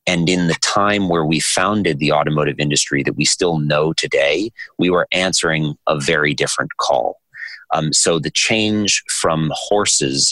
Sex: male